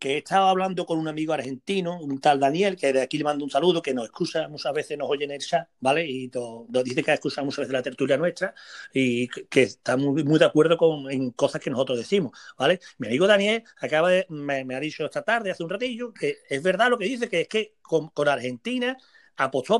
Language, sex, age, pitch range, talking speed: Spanish, male, 40-59, 150-230 Hz, 245 wpm